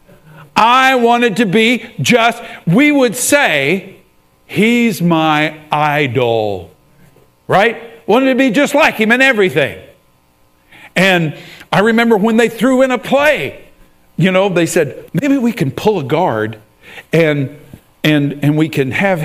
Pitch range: 140-215 Hz